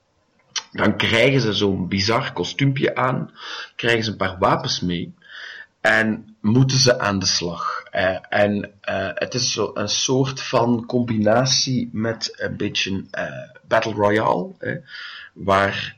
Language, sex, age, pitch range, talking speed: English, male, 30-49, 100-130 Hz, 135 wpm